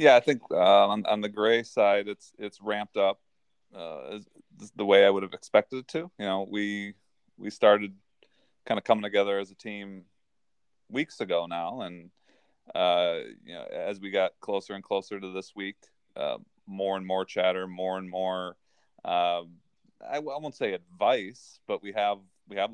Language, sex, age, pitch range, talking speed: English, male, 20-39, 90-105 Hz, 185 wpm